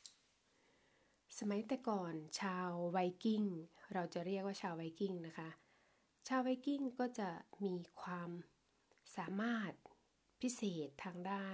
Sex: female